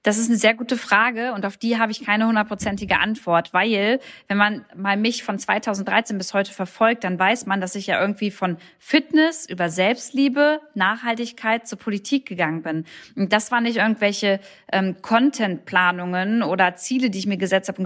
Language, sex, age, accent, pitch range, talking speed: German, female, 20-39, German, 190-230 Hz, 185 wpm